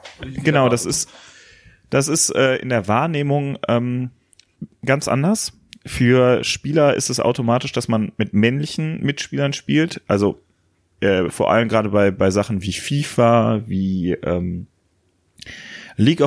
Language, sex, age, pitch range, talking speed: German, male, 30-49, 100-125 Hz, 135 wpm